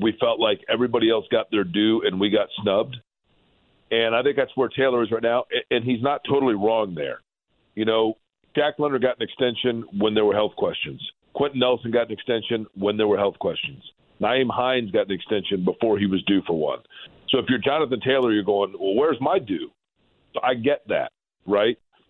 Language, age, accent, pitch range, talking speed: English, 50-69, American, 105-130 Hz, 205 wpm